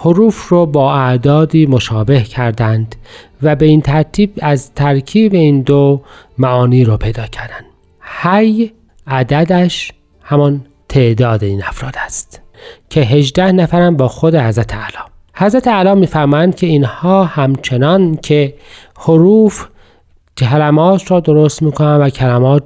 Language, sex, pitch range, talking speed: Persian, male, 130-170 Hz, 120 wpm